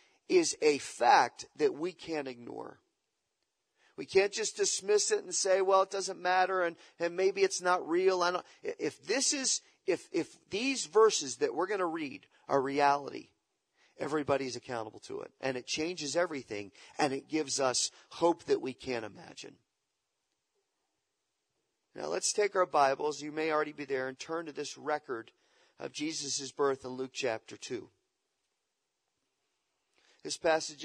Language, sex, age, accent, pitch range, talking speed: English, male, 40-59, American, 135-195 Hz, 150 wpm